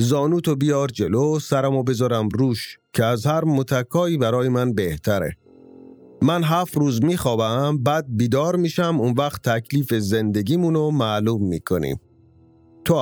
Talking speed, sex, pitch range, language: 130 wpm, male, 115-155 Hz, English